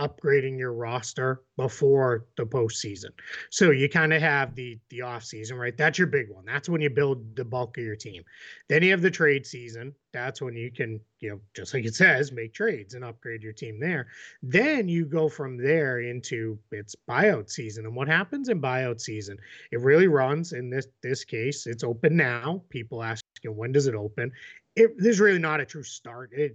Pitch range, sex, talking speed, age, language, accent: 120-155 Hz, male, 205 wpm, 30-49, English, American